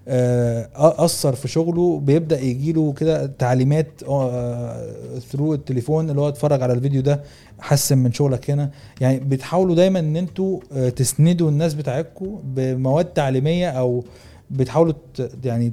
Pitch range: 130-160 Hz